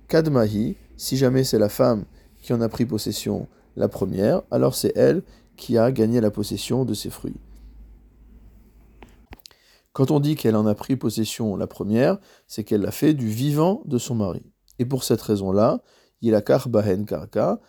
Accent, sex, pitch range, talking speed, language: French, male, 110-140 Hz, 170 wpm, French